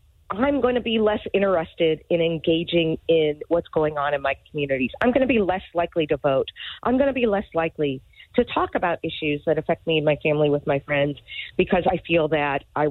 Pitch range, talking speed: 155-210 Hz, 220 wpm